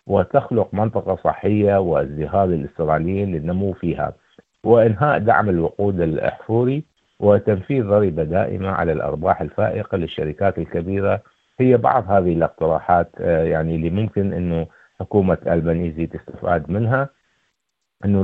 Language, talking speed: Arabic, 105 wpm